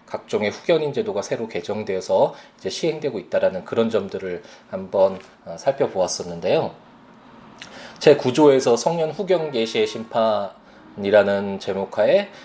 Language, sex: Korean, male